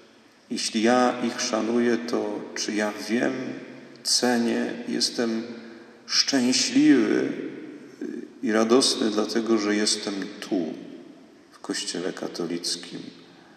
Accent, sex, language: native, male, Polish